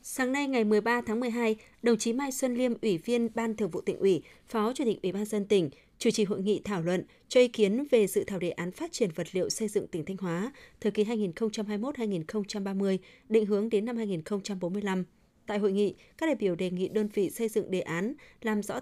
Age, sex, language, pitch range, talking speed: 20-39, female, Vietnamese, 185-225 Hz, 270 wpm